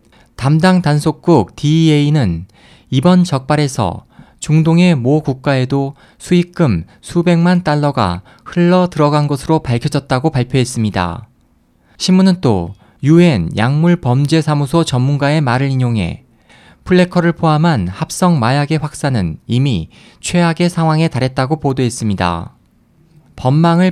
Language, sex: Korean, male